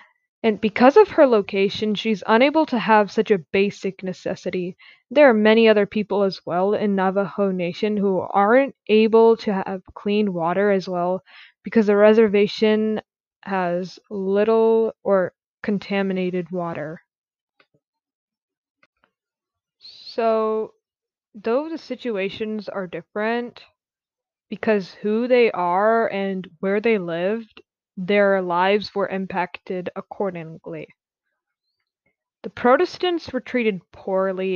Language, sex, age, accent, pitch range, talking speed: English, female, 10-29, American, 190-225 Hz, 110 wpm